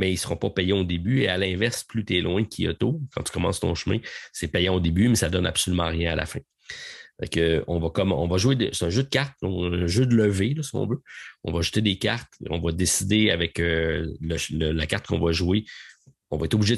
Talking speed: 270 wpm